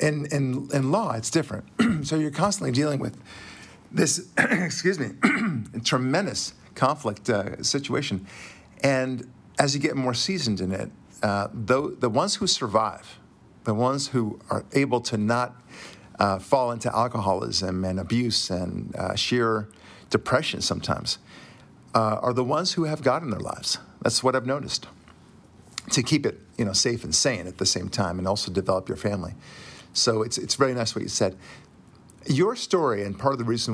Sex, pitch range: male, 105-140 Hz